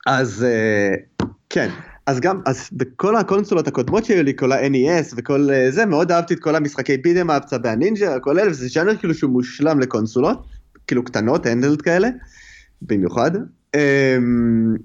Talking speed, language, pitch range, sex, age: 155 wpm, Hebrew, 125-170 Hz, male, 30-49